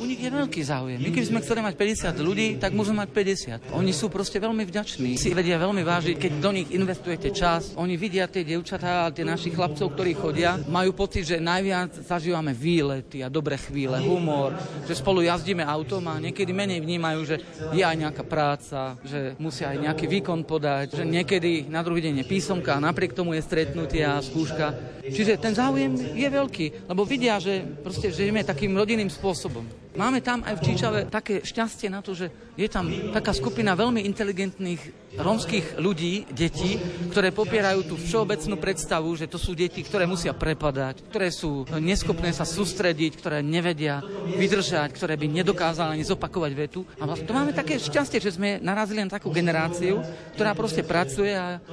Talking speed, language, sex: 180 wpm, Slovak, male